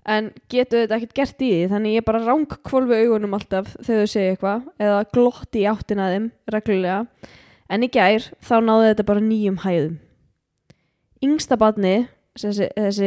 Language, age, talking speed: English, 10-29, 155 wpm